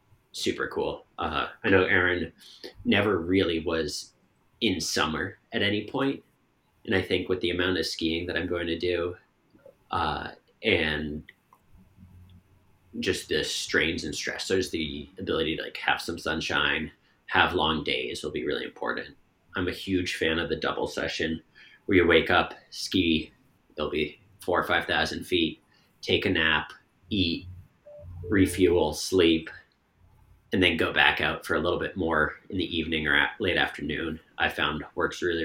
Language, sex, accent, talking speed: English, male, American, 160 wpm